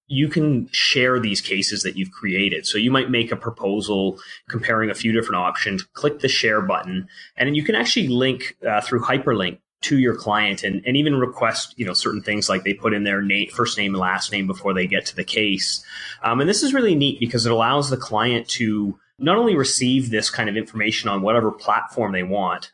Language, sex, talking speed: English, male, 220 wpm